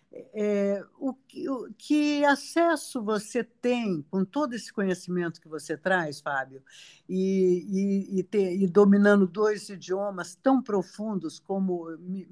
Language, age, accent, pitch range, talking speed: Portuguese, 60-79, Brazilian, 170-220 Hz, 130 wpm